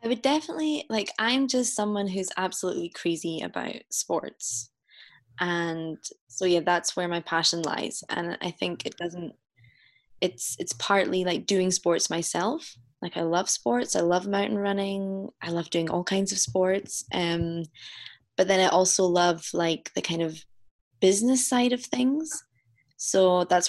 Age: 20-39